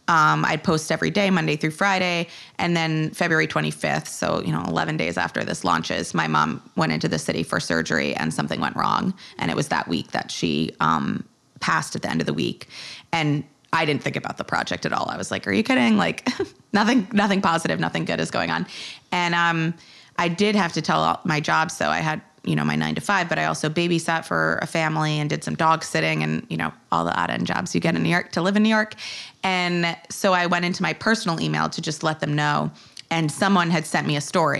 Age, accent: 20-39, American